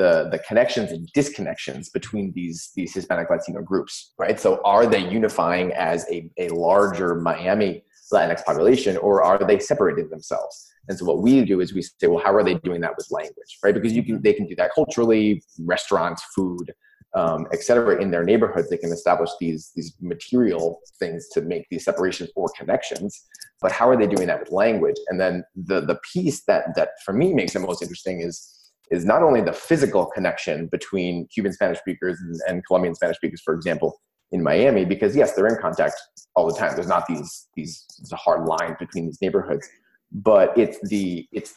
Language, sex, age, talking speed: English, male, 30-49, 195 wpm